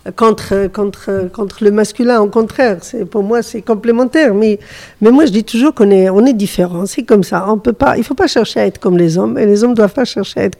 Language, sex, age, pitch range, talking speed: French, female, 50-69, 195-225 Hz, 260 wpm